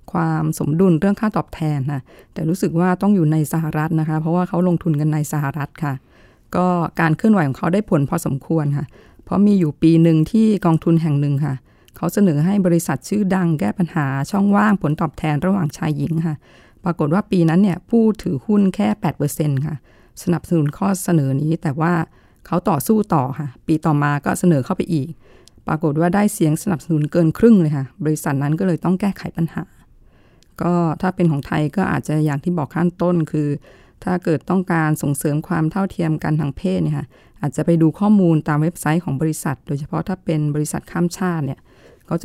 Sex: female